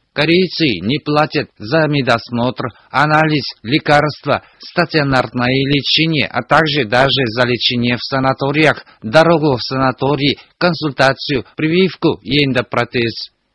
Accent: native